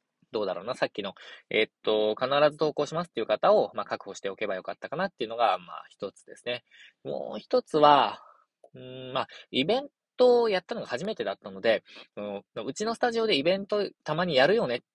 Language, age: Japanese, 20-39